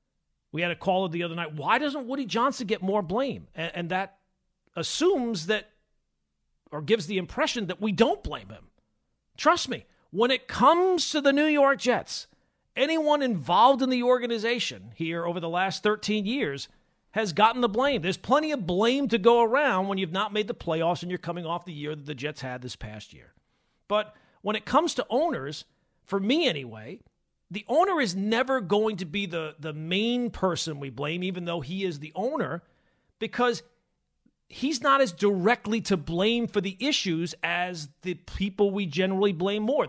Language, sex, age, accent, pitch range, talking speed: English, male, 40-59, American, 170-235 Hz, 185 wpm